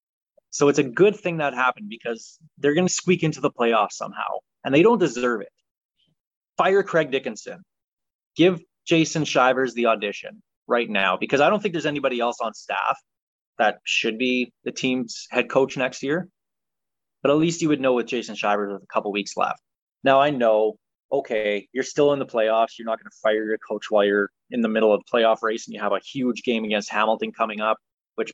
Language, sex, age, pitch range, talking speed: English, male, 20-39, 115-170 Hz, 210 wpm